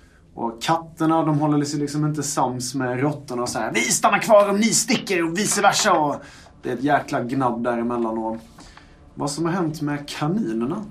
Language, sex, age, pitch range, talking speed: Swedish, male, 30-49, 115-150 Hz, 200 wpm